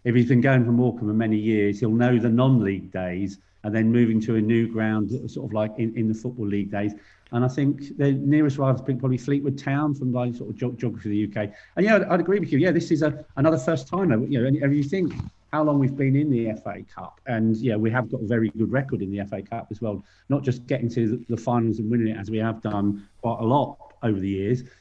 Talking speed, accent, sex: 255 wpm, British, male